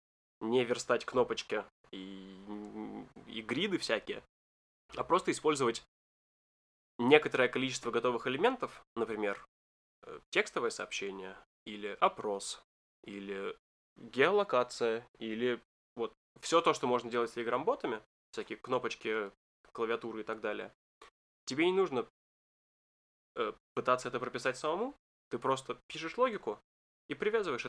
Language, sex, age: Russian, male, 10-29